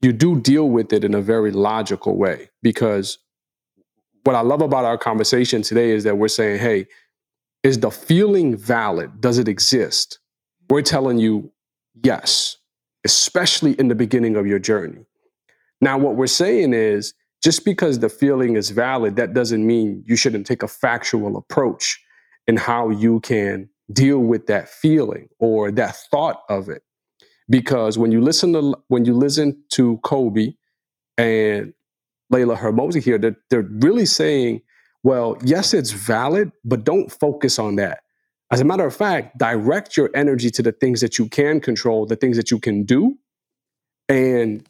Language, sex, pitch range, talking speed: English, male, 115-140 Hz, 165 wpm